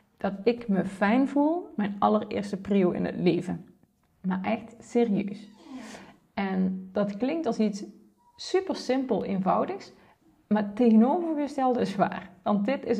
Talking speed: 140 wpm